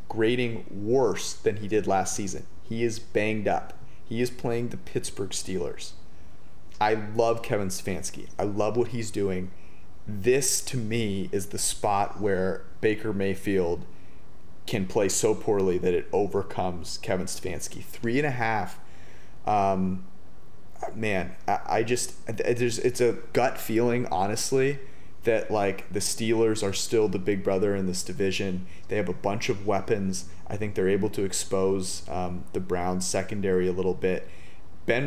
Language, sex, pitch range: English, male, 95-110 Hz